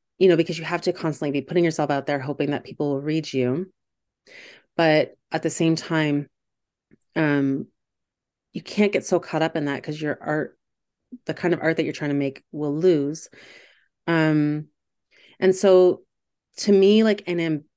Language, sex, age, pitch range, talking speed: English, female, 30-49, 145-180 Hz, 180 wpm